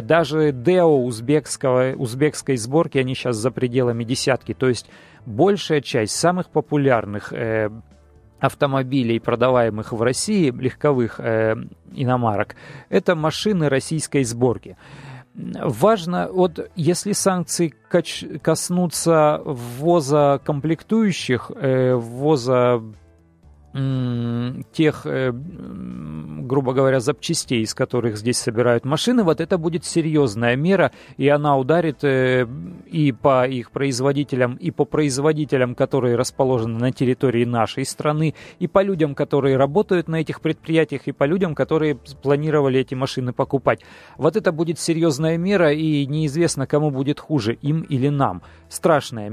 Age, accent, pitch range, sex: 40-59, native, 125-160 Hz, male